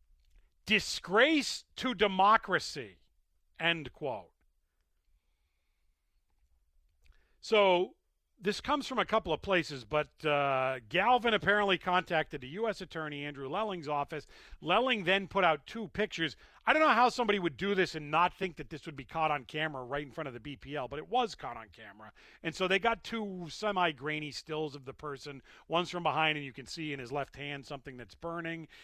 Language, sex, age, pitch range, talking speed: English, male, 40-59, 135-185 Hz, 175 wpm